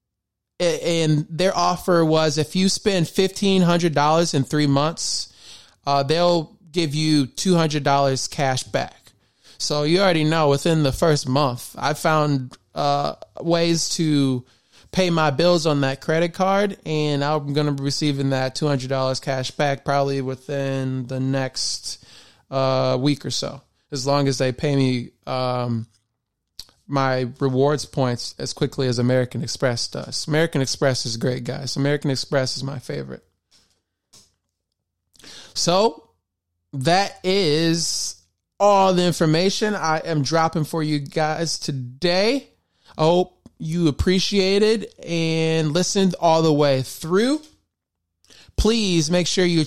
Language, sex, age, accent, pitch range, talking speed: English, male, 20-39, American, 130-170 Hz, 140 wpm